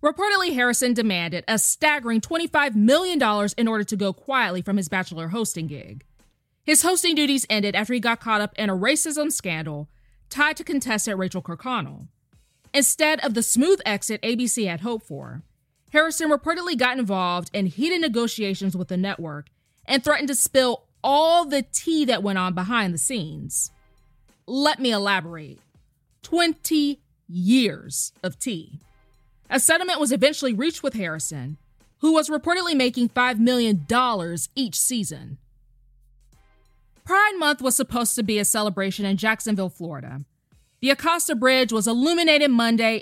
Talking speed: 150 wpm